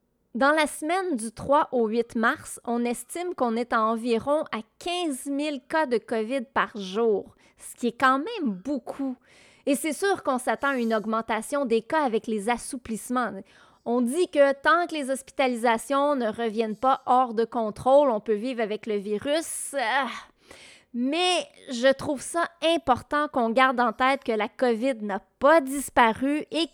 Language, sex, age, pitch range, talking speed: French, female, 30-49, 225-280 Hz, 170 wpm